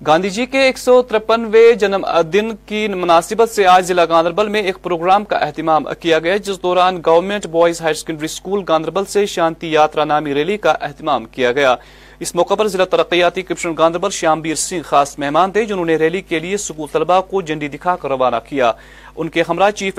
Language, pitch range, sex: Urdu, 110-165 Hz, male